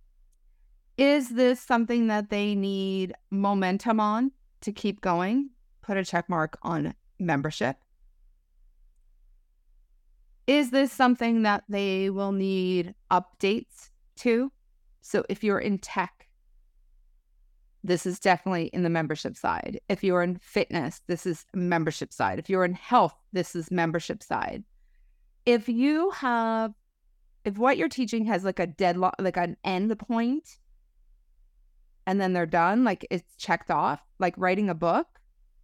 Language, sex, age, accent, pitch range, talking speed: English, female, 30-49, American, 165-230 Hz, 135 wpm